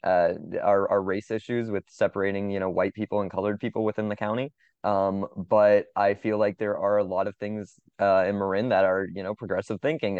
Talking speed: 220 wpm